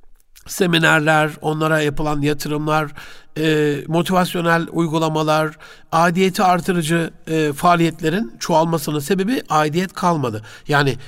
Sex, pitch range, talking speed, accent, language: male, 145-180 Hz, 75 wpm, native, Turkish